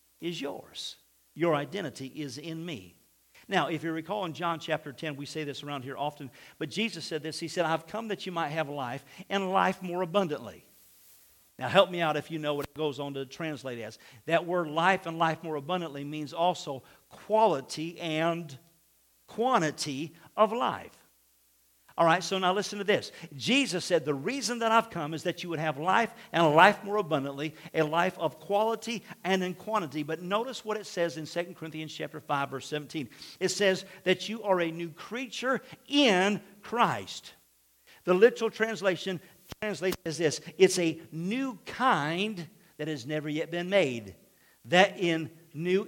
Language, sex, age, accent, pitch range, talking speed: English, male, 50-69, American, 150-190 Hz, 180 wpm